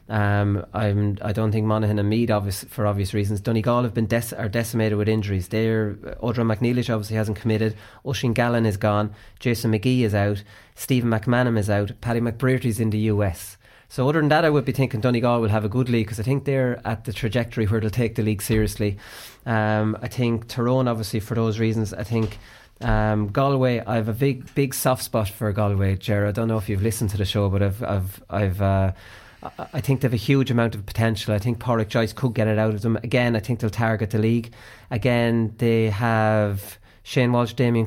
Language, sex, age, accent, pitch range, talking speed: English, male, 30-49, Irish, 105-120 Hz, 215 wpm